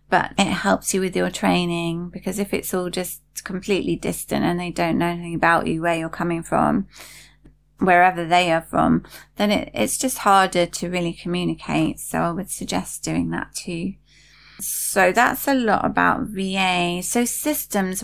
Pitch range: 150-200 Hz